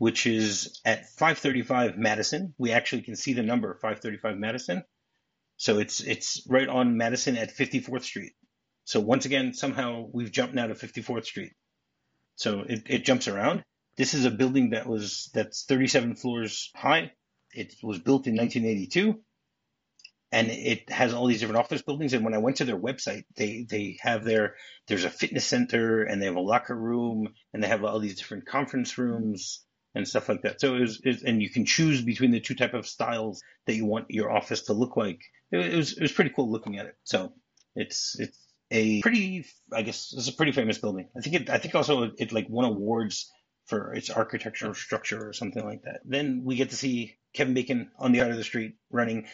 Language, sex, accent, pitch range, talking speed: English, male, American, 110-135 Hz, 205 wpm